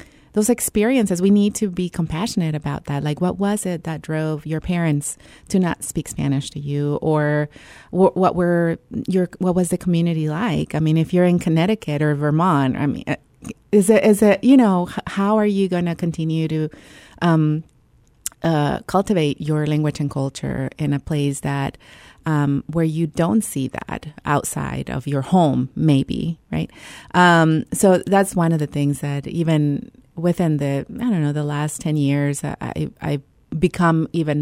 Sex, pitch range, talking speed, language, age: female, 145-180 Hz, 175 wpm, English, 30-49